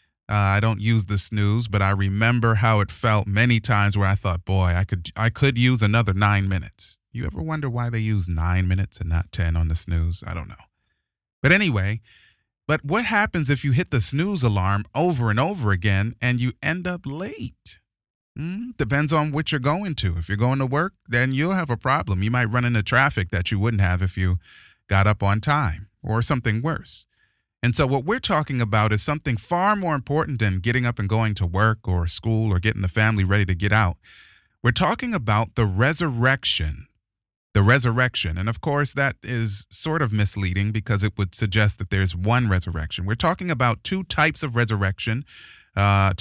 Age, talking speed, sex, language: 30-49, 205 wpm, male, English